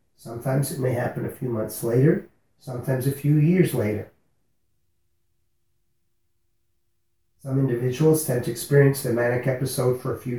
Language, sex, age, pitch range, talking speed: English, male, 40-59, 115-135 Hz, 140 wpm